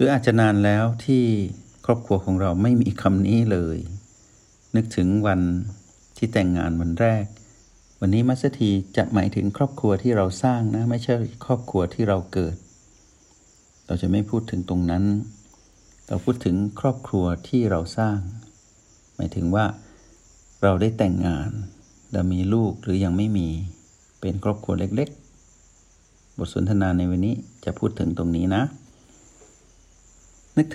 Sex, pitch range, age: male, 90-115 Hz, 60-79